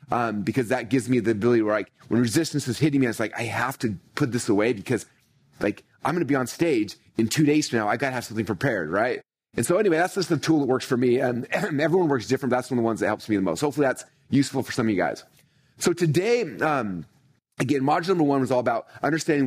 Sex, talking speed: male, 270 wpm